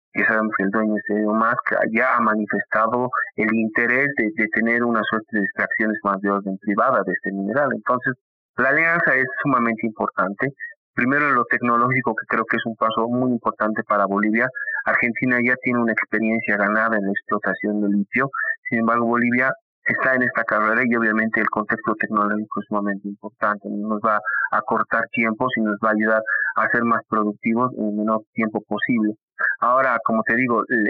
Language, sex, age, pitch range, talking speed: Spanish, male, 30-49, 105-120 Hz, 185 wpm